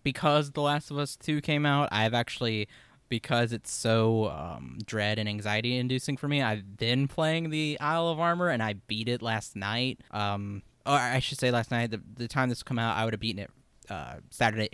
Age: 20-39